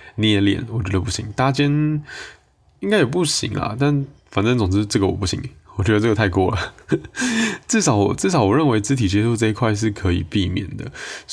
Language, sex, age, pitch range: Chinese, male, 20-39, 95-125 Hz